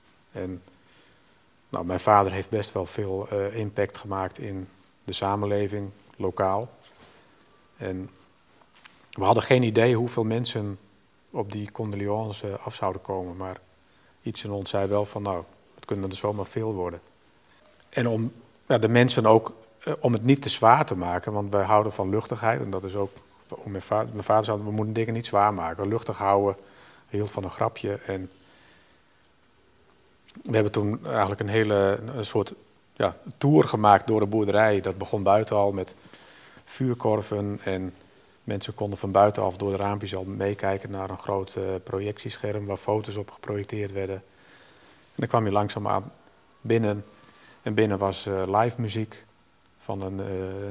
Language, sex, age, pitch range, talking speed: Dutch, male, 50-69, 95-110 Hz, 165 wpm